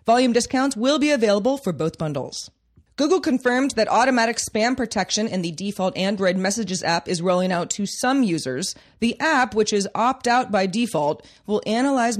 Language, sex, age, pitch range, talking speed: English, female, 30-49, 175-225 Hz, 170 wpm